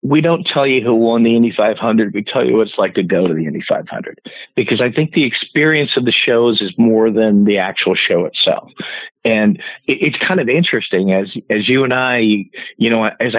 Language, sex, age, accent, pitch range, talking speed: English, male, 50-69, American, 105-130 Hz, 220 wpm